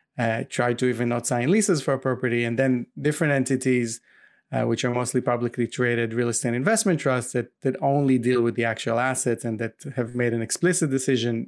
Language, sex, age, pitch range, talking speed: English, male, 20-39, 115-135 Hz, 205 wpm